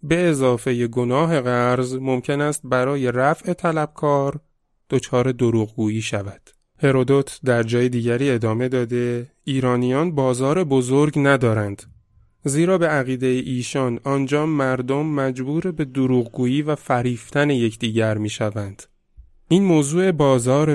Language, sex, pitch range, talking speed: Persian, male, 115-135 Hz, 120 wpm